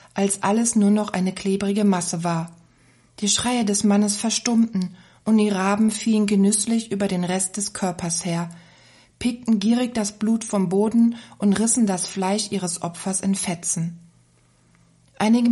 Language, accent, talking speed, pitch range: German, German, 150 wpm, 180-220 Hz